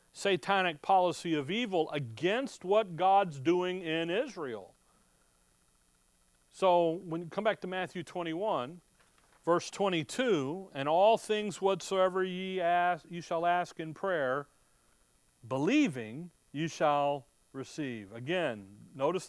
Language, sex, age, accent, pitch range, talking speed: English, male, 40-59, American, 135-180 Hz, 115 wpm